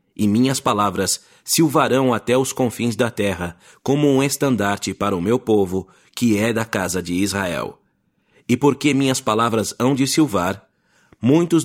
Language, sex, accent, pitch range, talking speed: English, male, Brazilian, 105-135 Hz, 155 wpm